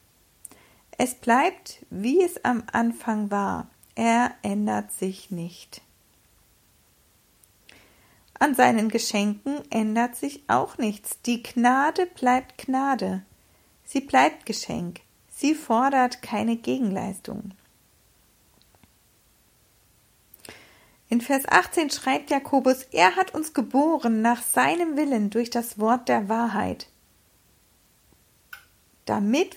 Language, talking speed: German, 95 wpm